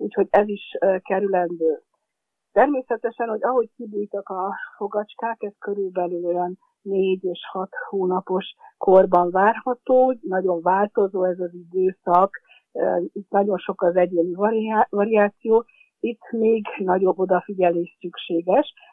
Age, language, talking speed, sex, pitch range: 50-69, Hungarian, 115 wpm, female, 180-215 Hz